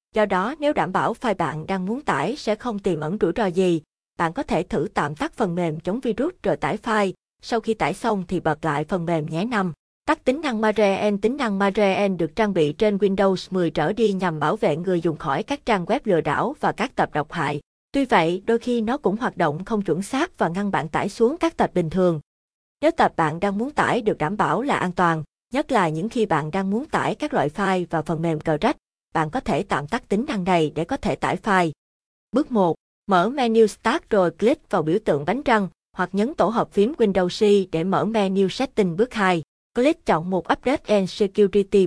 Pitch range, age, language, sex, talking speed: 180-225 Hz, 20-39, Vietnamese, female, 235 wpm